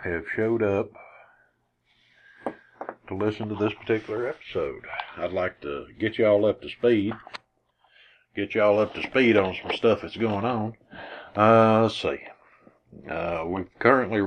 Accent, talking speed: American, 145 wpm